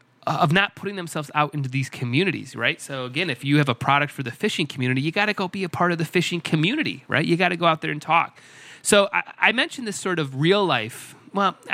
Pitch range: 125-170 Hz